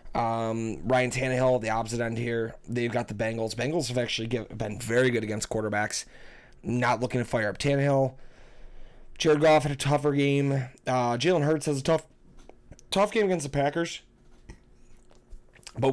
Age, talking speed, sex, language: 30-49, 160 wpm, male, English